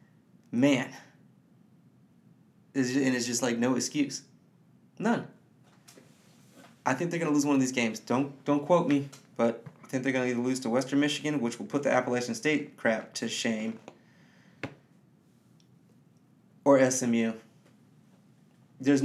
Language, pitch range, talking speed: English, 115-140 Hz, 140 wpm